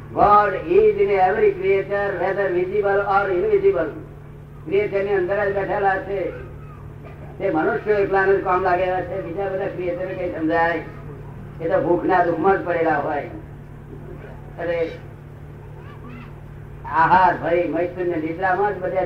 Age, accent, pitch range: 50-69, native, 155-190 Hz